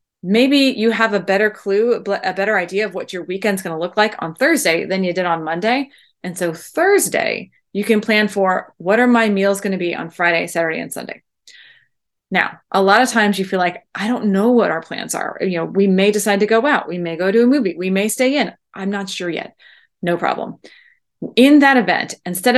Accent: American